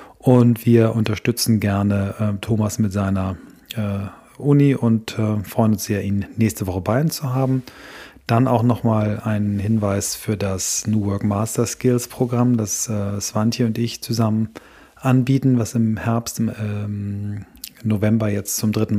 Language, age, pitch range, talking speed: German, 30-49, 105-120 Hz, 155 wpm